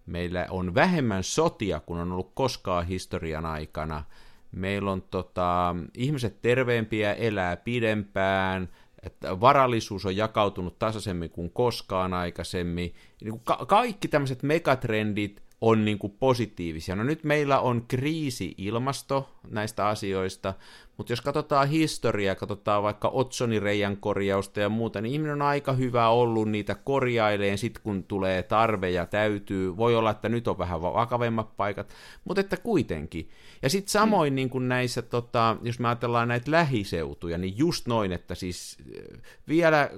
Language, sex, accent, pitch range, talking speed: Finnish, male, native, 95-125 Hz, 140 wpm